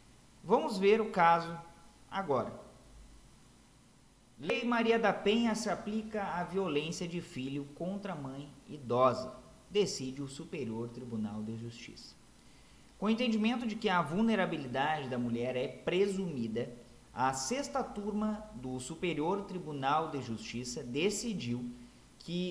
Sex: male